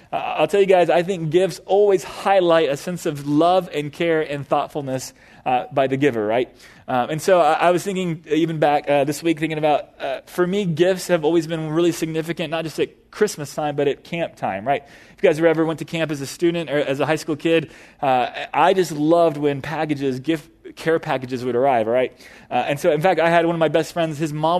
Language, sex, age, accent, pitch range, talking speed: English, male, 20-39, American, 150-185 Hz, 240 wpm